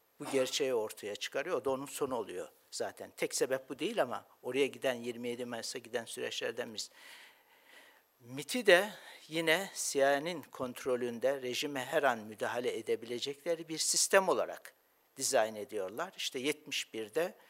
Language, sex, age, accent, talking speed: Turkish, male, 60-79, native, 135 wpm